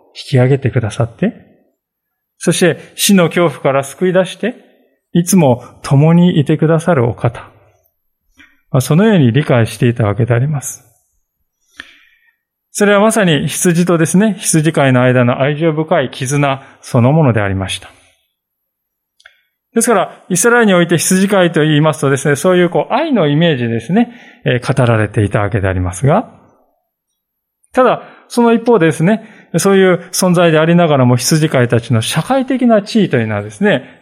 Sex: male